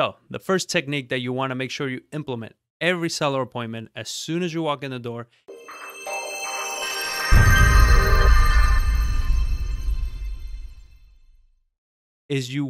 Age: 30-49